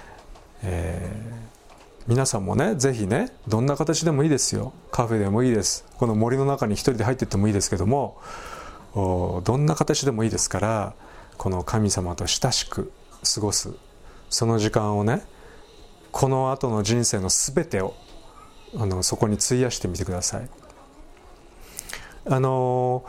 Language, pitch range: Japanese, 105-140 Hz